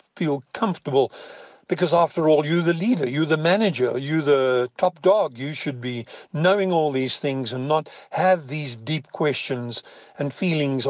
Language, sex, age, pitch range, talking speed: English, male, 50-69, 140-185 Hz, 165 wpm